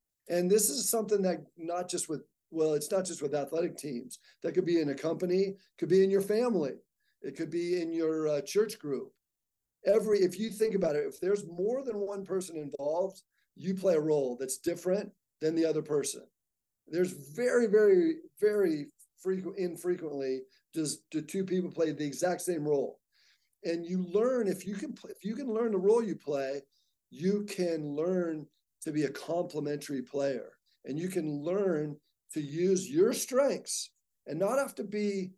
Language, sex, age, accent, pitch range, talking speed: English, male, 50-69, American, 150-200 Hz, 185 wpm